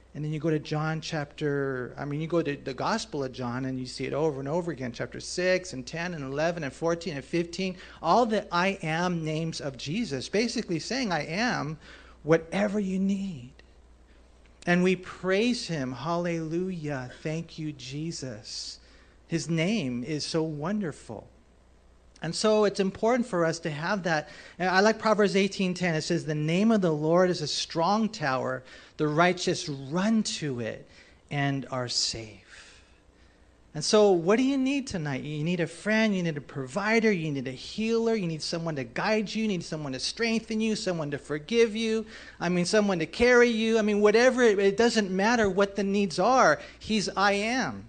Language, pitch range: English, 145-205 Hz